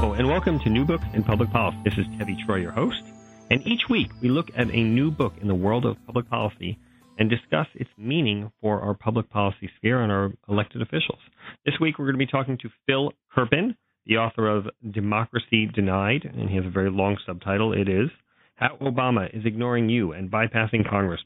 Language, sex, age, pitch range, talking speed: English, male, 40-59, 95-120 Hz, 210 wpm